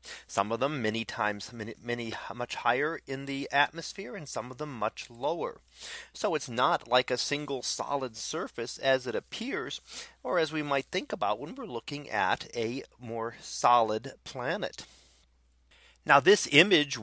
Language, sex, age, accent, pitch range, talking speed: English, male, 40-59, American, 110-140 Hz, 160 wpm